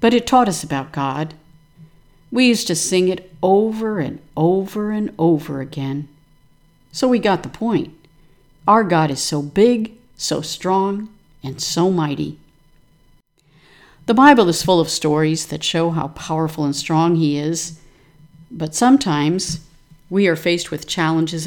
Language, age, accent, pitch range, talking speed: English, 60-79, American, 155-190 Hz, 150 wpm